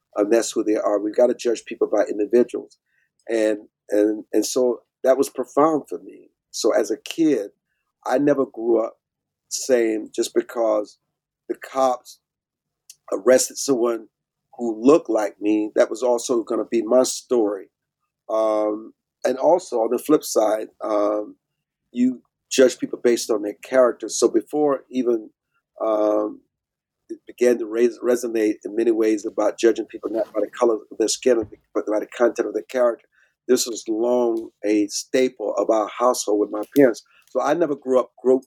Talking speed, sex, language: 170 wpm, male, English